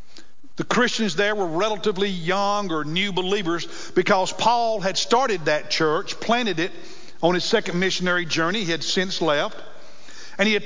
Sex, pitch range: male, 175-220 Hz